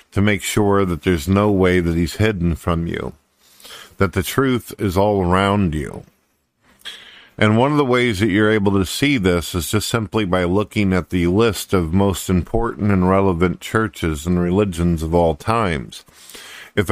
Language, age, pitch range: English, 50-69, 90-105 Hz